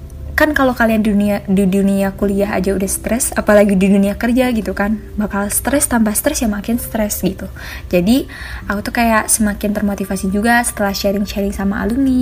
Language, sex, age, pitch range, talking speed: Indonesian, female, 20-39, 200-230 Hz, 180 wpm